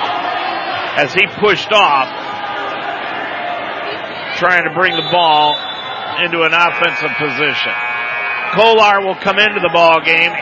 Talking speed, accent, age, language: 115 wpm, American, 50-69, English